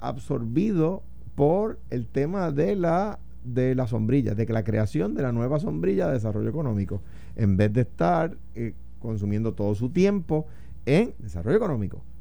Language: Spanish